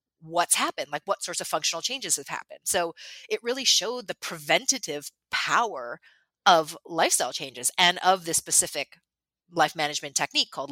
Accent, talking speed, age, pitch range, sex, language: American, 155 wpm, 30-49, 150-190 Hz, female, English